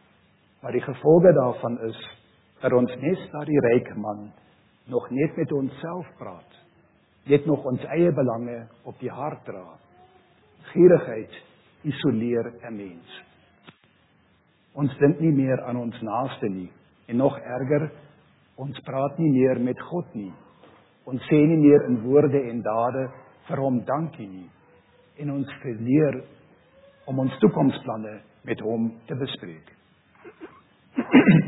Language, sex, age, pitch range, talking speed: German, male, 50-69, 115-150 Hz, 135 wpm